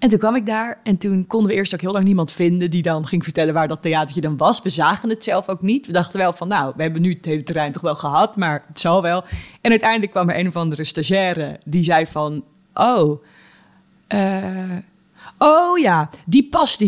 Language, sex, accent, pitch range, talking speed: Dutch, female, Dutch, 170-250 Hz, 230 wpm